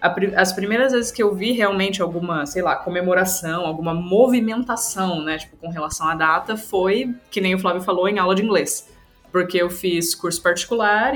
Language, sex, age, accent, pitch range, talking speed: Portuguese, female, 20-39, Brazilian, 175-235 Hz, 185 wpm